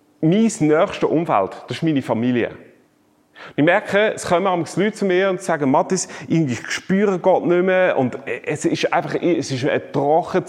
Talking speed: 175 wpm